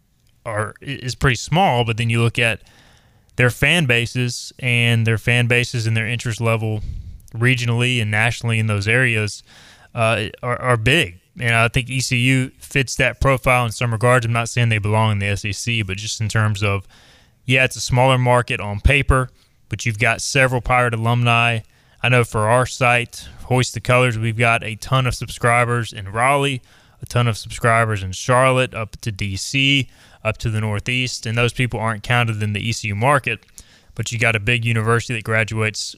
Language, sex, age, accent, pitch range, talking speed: English, male, 20-39, American, 110-125 Hz, 185 wpm